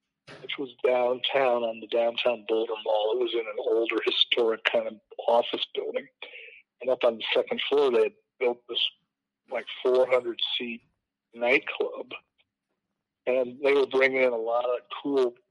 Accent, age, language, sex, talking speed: American, 50-69, English, male, 160 wpm